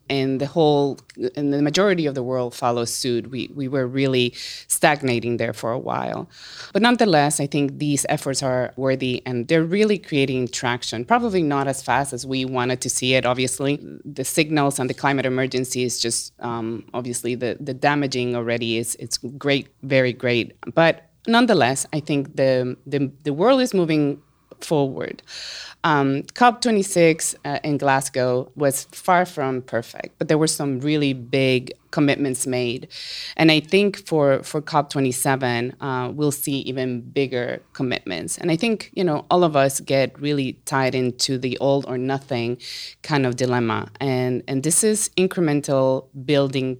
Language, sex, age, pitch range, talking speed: English, female, 20-39, 125-150 Hz, 165 wpm